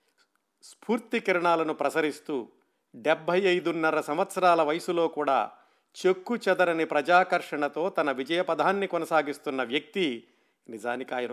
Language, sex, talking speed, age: Telugu, male, 95 wpm, 50-69